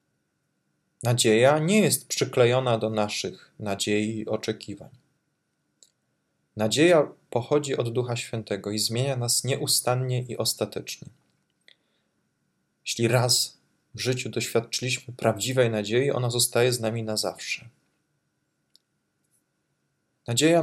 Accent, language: native, Polish